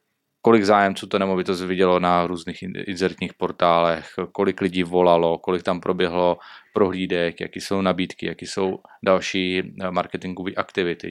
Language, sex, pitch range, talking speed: Czech, male, 90-100 Hz, 130 wpm